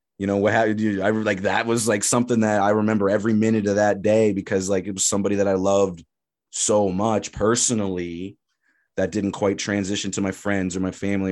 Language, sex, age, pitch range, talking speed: English, male, 20-39, 95-105 Hz, 205 wpm